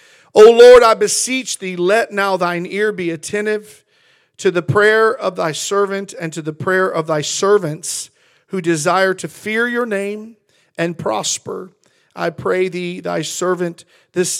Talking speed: 160 wpm